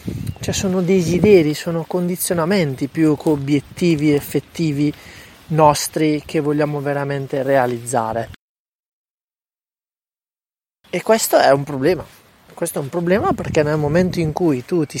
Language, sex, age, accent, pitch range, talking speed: Italian, male, 20-39, native, 145-180 Hz, 120 wpm